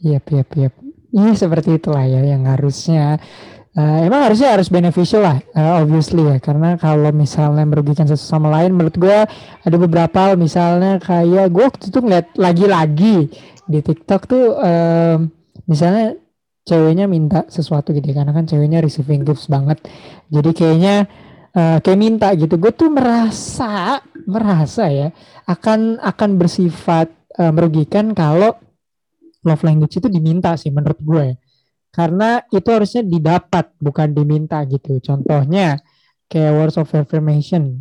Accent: native